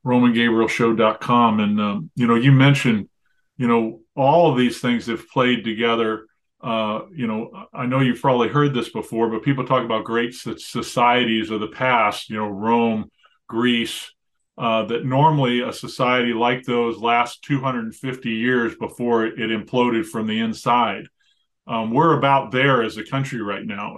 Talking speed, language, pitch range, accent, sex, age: 160 wpm, English, 115-135 Hz, American, male, 40-59